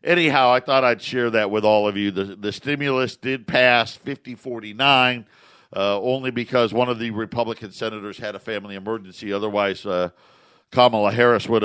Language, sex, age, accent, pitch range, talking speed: English, male, 50-69, American, 105-120 Hz, 170 wpm